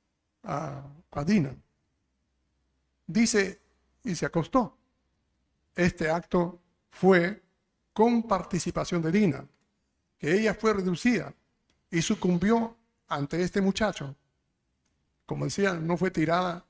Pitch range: 145-195 Hz